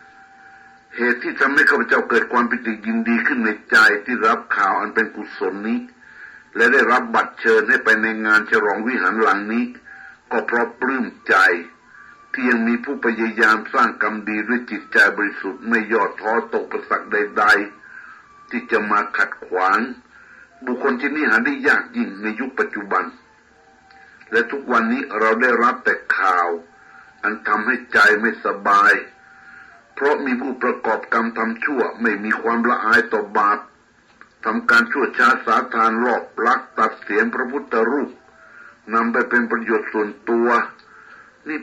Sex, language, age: male, Thai, 60-79